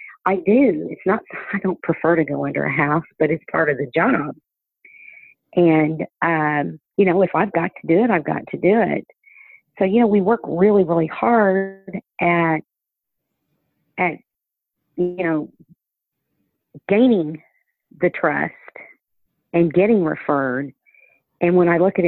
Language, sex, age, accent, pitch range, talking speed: English, female, 50-69, American, 155-195 Hz, 150 wpm